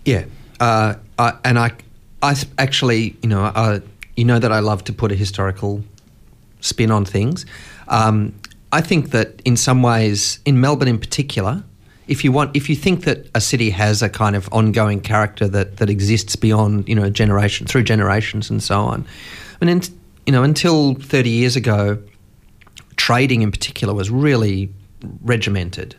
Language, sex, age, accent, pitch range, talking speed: English, male, 30-49, Australian, 100-130 Hz, 170 wpm